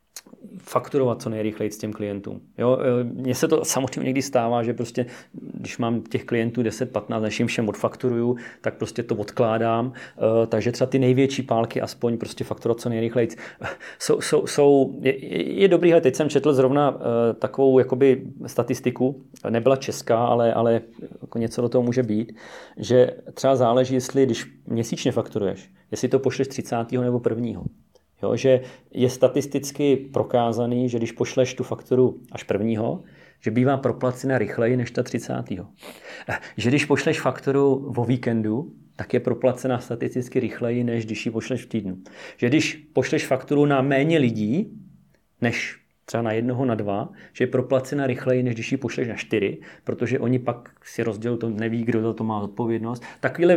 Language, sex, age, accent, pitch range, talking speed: Czech, male, 30-49, native, 115-135 Hz, 165 wpm